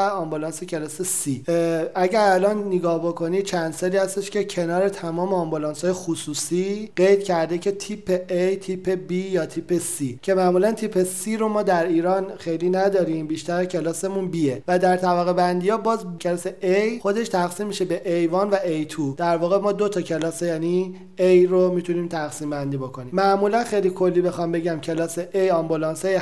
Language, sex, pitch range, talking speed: Persian, male, 160-190 Hz, 165 wpm